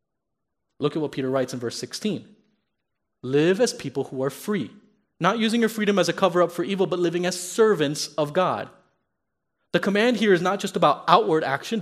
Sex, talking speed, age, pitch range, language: male, 195 wpm, 30-49, 150-200 Hz, English